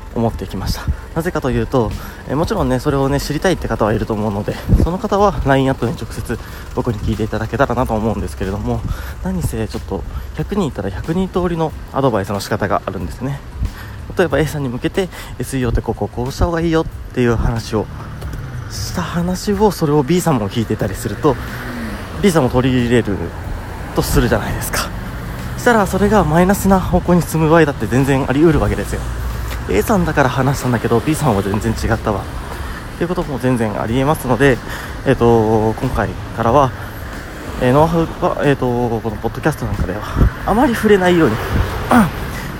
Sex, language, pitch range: male, Japanese, 100-140 Hz